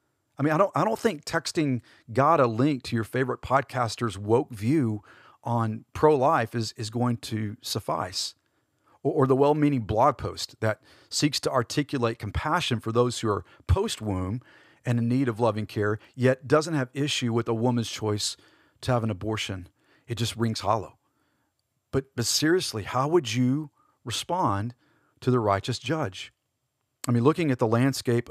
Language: English